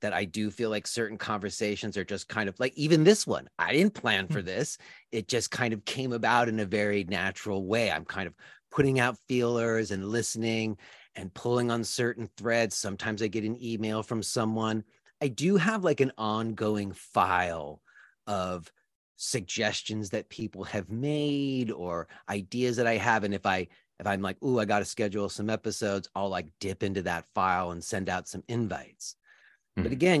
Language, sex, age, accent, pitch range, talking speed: English, male, 30-49, American, 100-125 Hz, 190 wpm